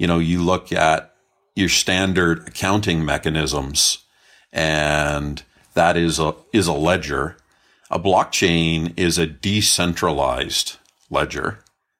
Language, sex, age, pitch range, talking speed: English, male, 50-69, 80-95 Hz, 105 wpm